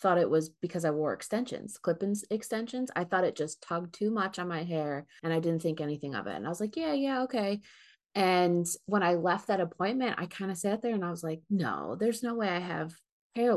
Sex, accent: female, American